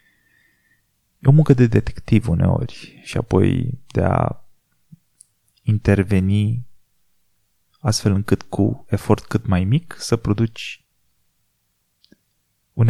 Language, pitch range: Romanian, 100-130 Hz